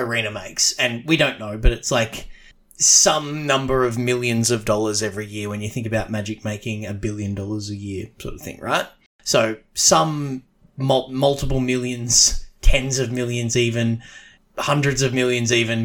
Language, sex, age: English, male, 30-49